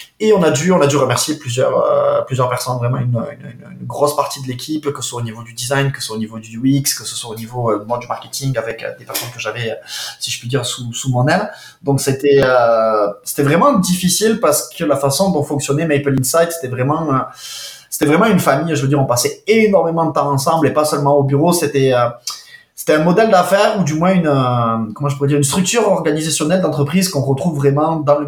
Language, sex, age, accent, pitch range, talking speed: French, male, 20-39, French, 130-160 Hz, 245 wpm